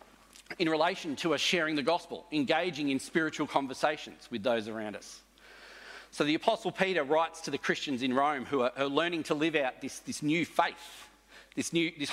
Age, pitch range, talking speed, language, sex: 40-59, 140-180 Hz, 190 wpm, English, male